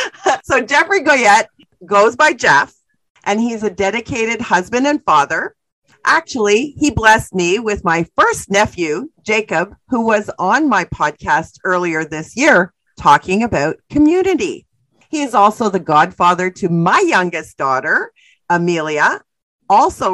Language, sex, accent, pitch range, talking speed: English, female, American, 170-235 Hz, 130 wpm